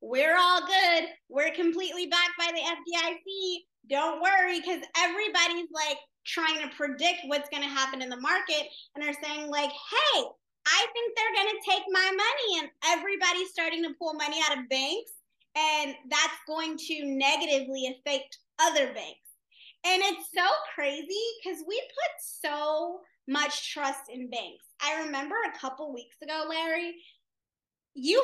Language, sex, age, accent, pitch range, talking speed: English, female, 20-39, American, 275-350 Hz, 155 wpm